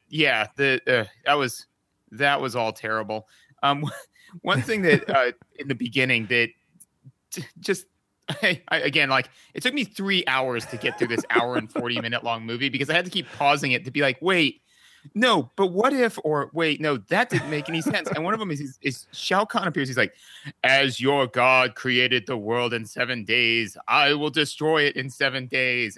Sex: male